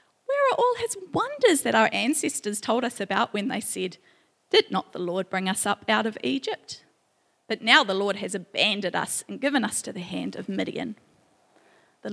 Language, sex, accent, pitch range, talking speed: English, female, Australian, 205-280 Hz, 200 wpm